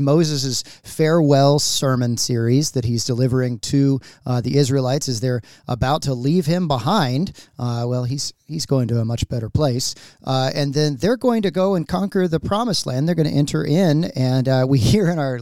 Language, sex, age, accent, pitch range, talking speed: English, male, 40-59, American, 125-155 Hz, 200 wpm